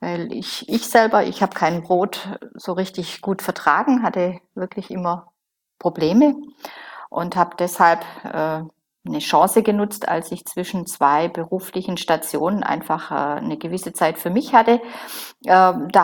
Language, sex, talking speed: German, female, 145 wpm